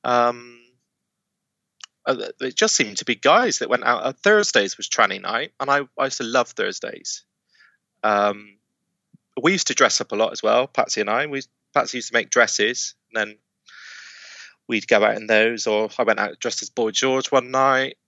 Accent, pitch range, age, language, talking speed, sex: British, 110-180 Hz, 20-39, English, 195 wpm, male